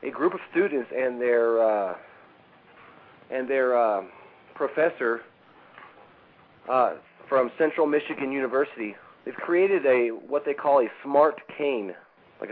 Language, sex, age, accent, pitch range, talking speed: English, male, 40-59, American, 115-145 Hz, 125 wpm